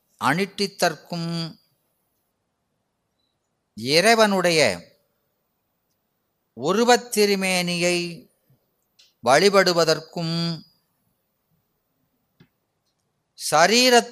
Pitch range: 140-180 Hz